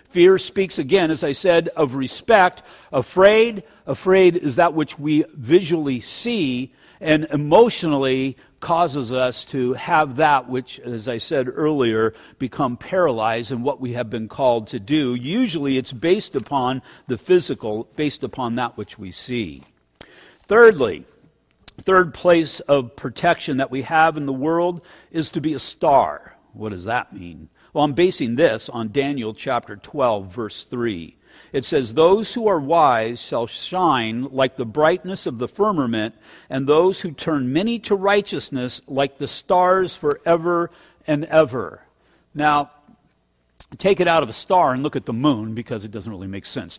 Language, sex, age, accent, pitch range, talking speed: English, male, 50-69, American, 120-170 Hz, 160 wpm